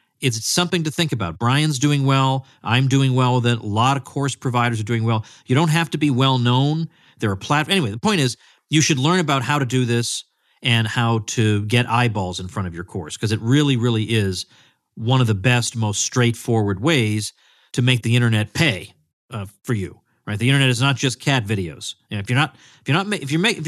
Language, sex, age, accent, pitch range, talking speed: English, male, 40-59, American, 110-140 Hz, 235 wpm